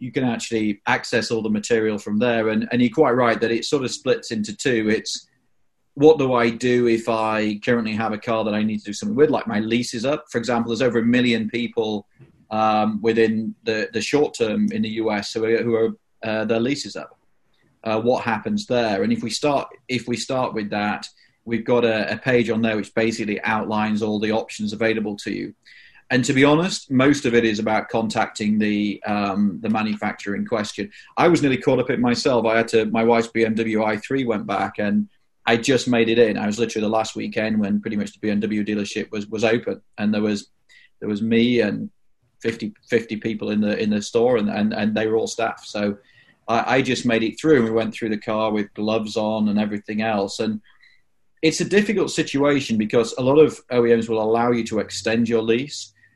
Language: English